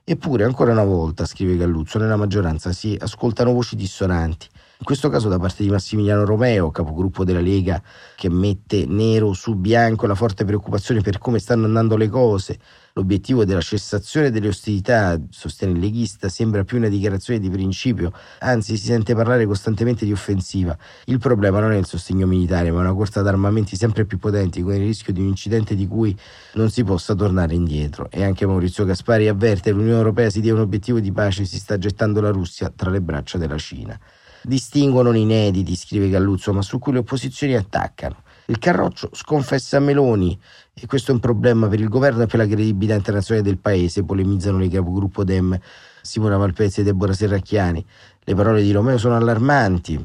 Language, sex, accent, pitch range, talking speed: Italian, male, native, 95-115 Hz, 185 wpm